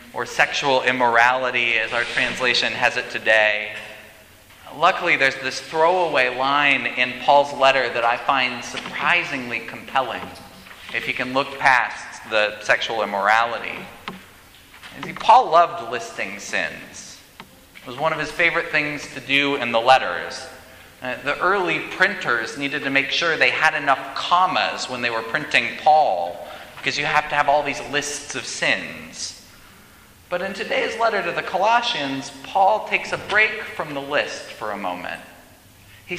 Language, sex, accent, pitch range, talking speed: English, male, American, 105-155 Hz, 150 wpm